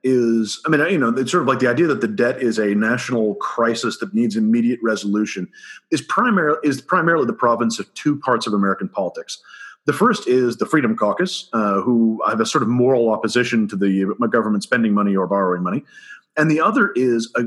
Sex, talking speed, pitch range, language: male, 210 wpm, 110-130 Hz, English